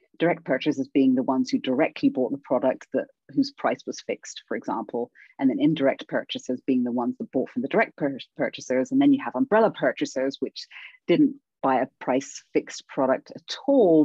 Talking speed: 195 wpm